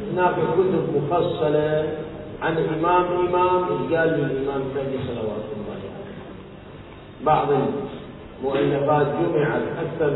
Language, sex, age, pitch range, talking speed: Arabic, male, 40-59, 135-185 Hz, 100 wpm